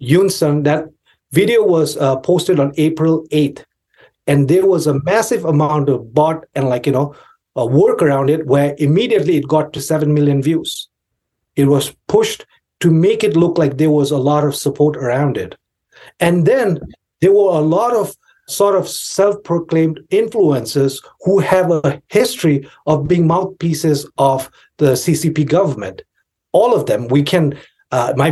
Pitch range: 140-170 Hz